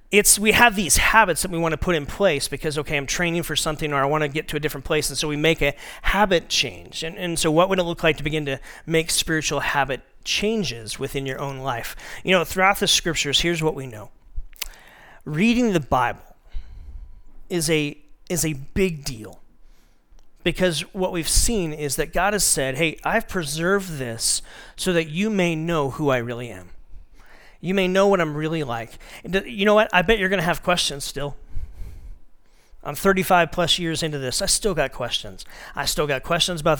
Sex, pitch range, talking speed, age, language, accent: male, 140-185 Hz, 200 wpm, 40-59, English, American